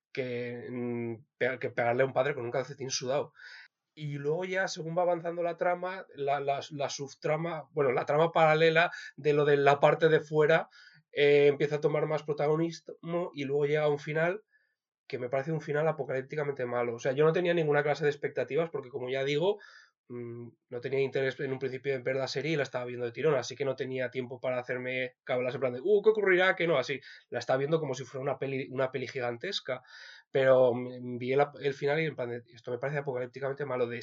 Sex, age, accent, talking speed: male, 20-39, Spanish, 215 wpm